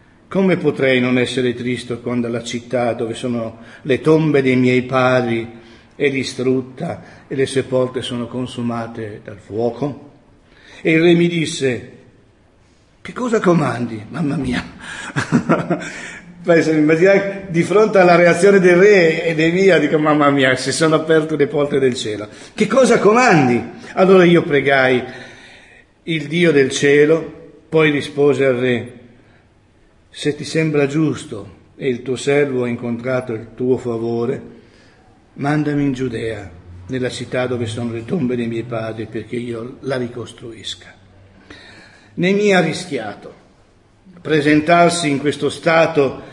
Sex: male